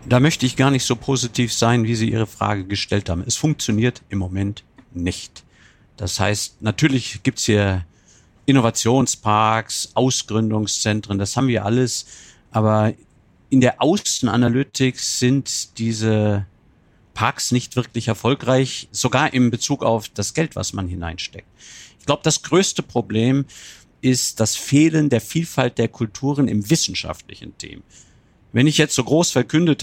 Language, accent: German, German